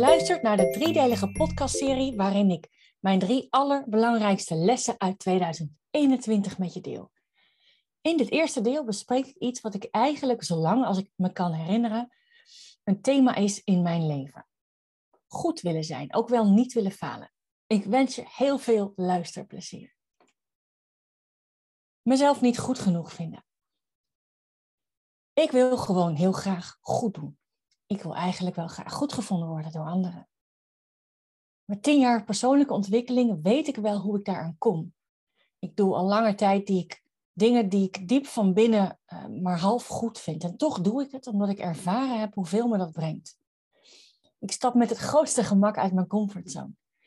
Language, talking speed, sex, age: Dutch, 160 wpm, female, 30-49